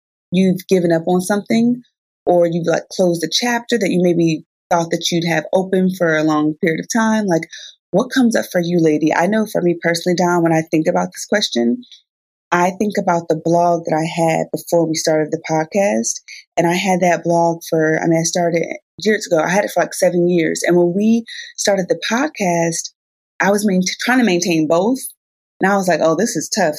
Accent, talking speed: American, 215 wpm